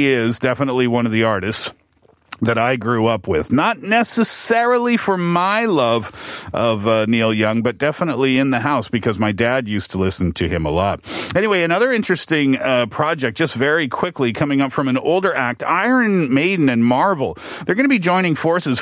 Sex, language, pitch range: male, Korean, 125-165 Hz